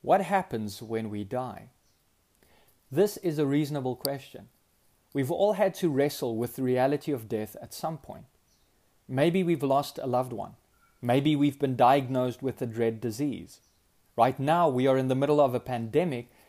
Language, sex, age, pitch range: English, male, 30-49, 115-160 Hz